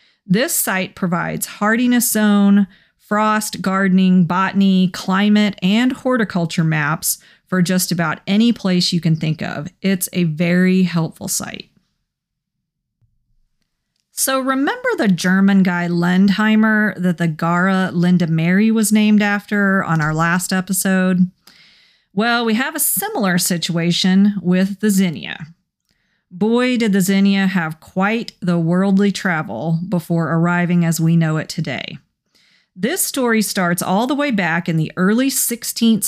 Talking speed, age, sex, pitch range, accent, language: 135 wpm, 40-59, female, 175-210 Hz, American, English